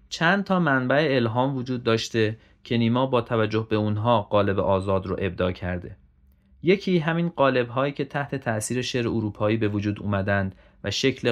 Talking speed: 165 wpm